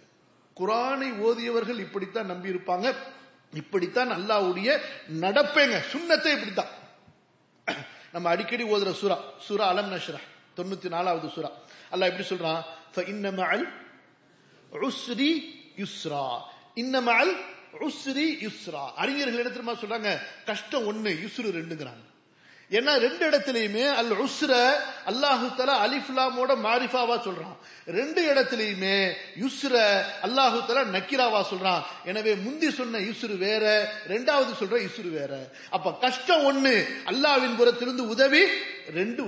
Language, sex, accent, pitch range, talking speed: English, male, Indian, 195-270 Hz, 100 wpm